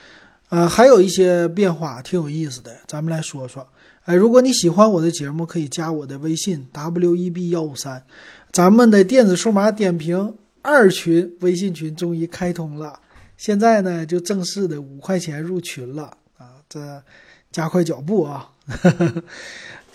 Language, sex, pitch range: Chinese, male, 160-200 Hz